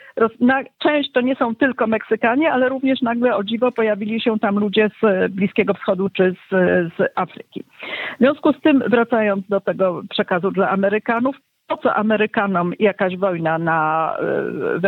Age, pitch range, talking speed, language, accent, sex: 50-69, 175-235 Hz, 160 wpm, Polish, native, female